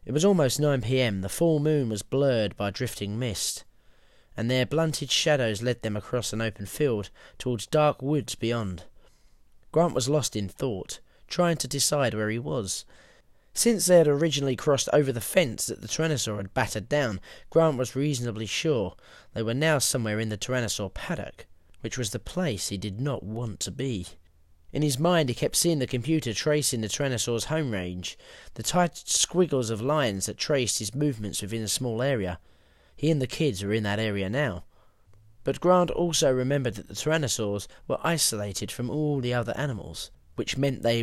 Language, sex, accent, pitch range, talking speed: English, male, British, 105-145 Hz, 185 wpm